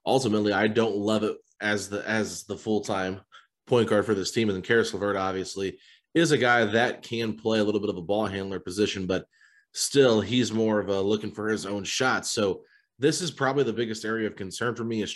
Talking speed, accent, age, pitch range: 230 wpm, American, 30-49, 100-120 Hz